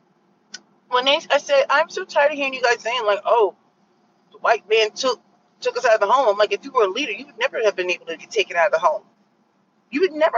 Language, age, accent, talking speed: English, 40-59, American, 270 wpm